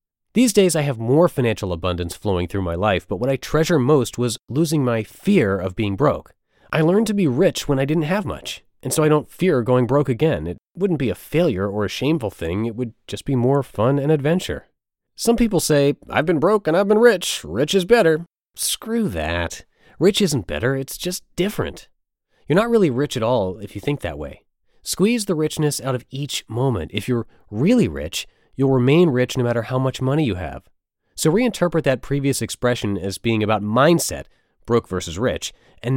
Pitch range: 105-160 Hz